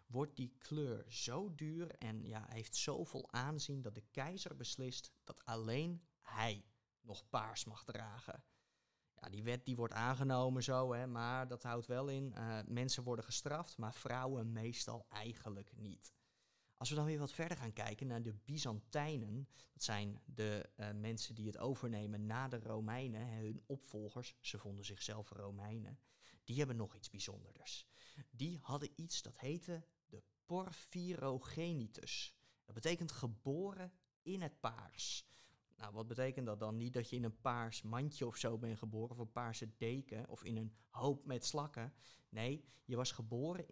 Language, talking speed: Dutch, 165 wpm